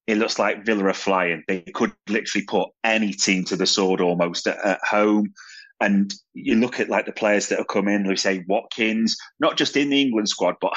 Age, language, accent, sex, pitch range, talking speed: 30-49, English, British, male, 105-125 Hz, 225 wpm